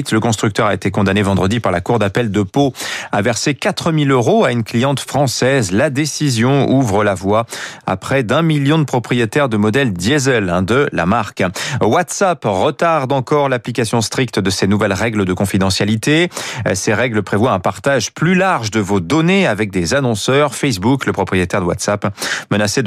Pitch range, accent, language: 105-145 Hz, French, French